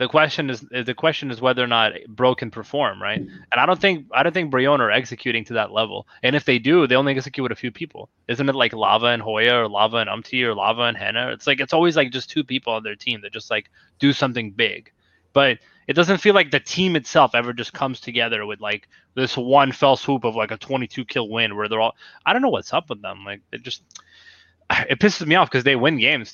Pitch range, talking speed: 115-140 Hz, 255 wpm